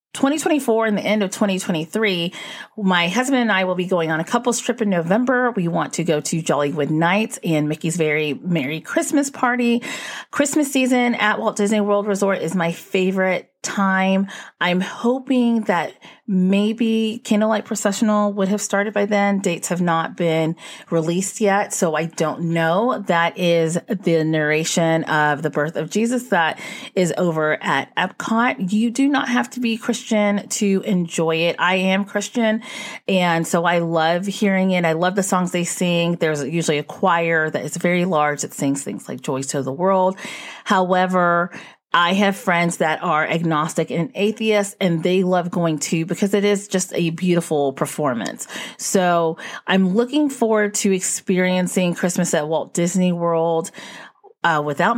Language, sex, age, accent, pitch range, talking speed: English, female, 30-49, American, 165-215 Hz, 165 wpm